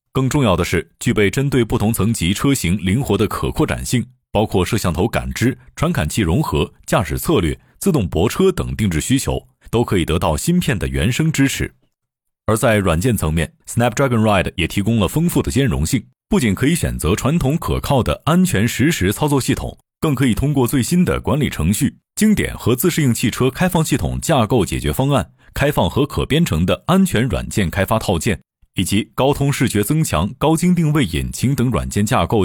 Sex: male